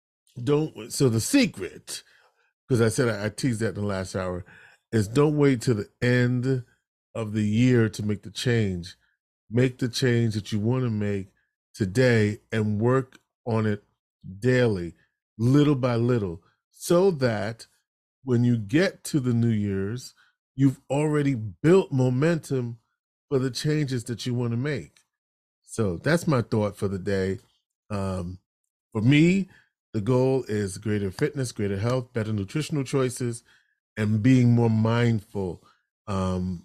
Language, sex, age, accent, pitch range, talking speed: English, male, 40-59, American, 105-140 Hz, 145 wpm